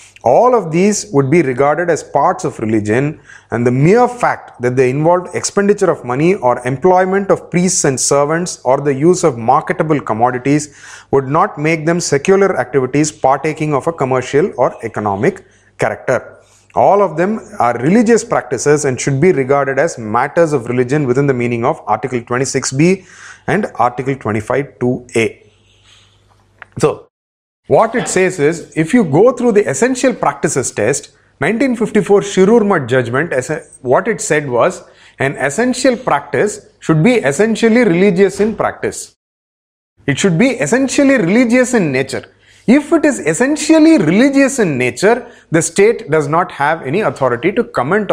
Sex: male